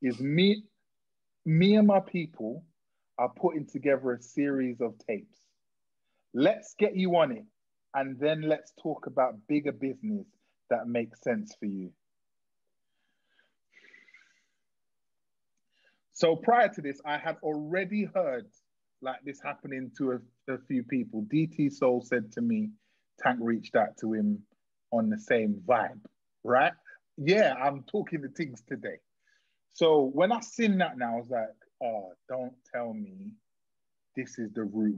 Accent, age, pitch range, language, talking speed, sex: British, 30-49, 120-185 Hz, English, 145 wpm, male